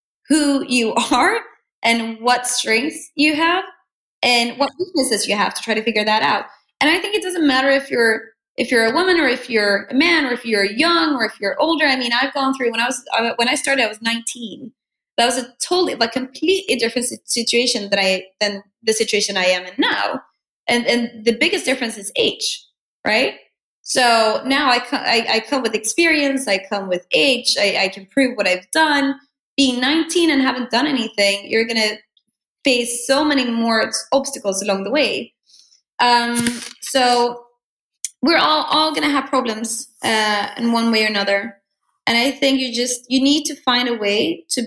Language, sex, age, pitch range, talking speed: English, female, 20-39, 220-275 Hz, 195 wpm